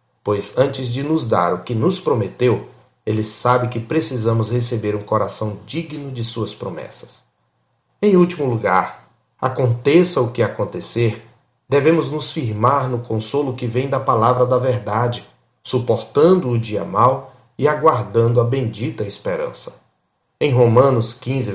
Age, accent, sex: 40-59, Brazilian, male